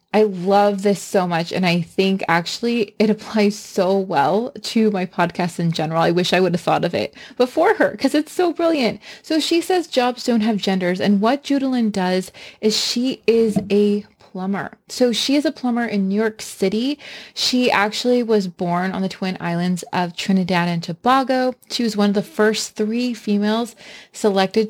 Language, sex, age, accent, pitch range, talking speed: English, female, 20-39, American, 195-245 Hz, 190 wpm